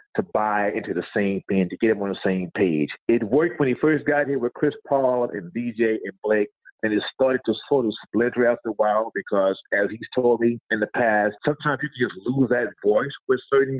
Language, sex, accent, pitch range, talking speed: English, male, American, 115-160 Hz, 235 wpm